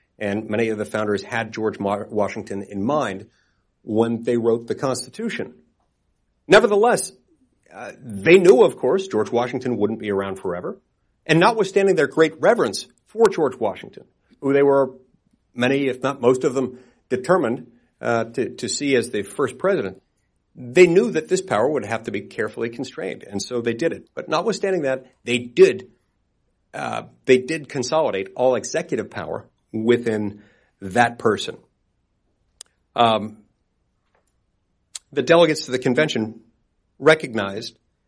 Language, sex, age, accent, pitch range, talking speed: English, male, 50-69, American, 105-135 Hz, 145 wpm